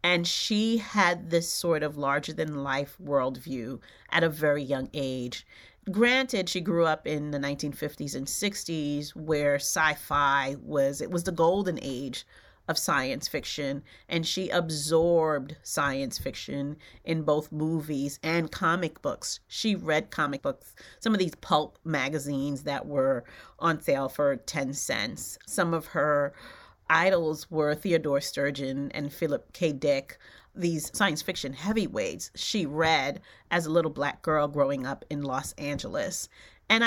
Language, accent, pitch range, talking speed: English, American, 140-170 Hz, 145 wpm